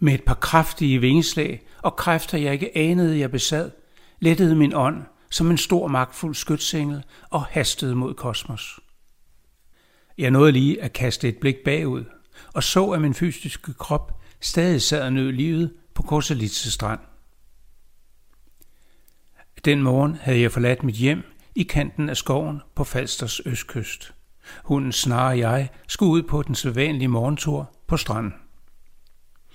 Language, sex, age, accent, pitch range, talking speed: Danish, male, 60-79, native, 125-155 Hz, 145 wpm